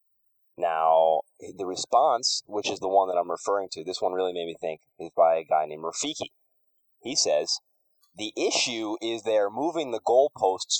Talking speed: 180 wpm